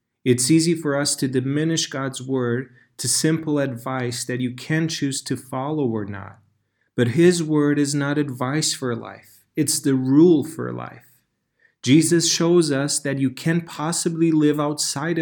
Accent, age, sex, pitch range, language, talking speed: American, 30-49, male, 120-155 Hz, English, 160 wpm